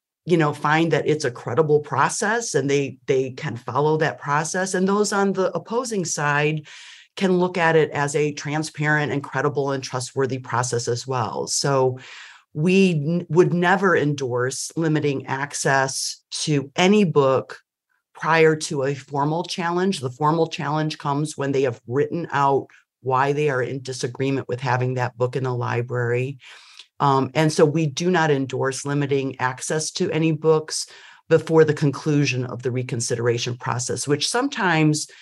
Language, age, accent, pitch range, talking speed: English, 40-59, American, 130-160 Hz, 160 wpm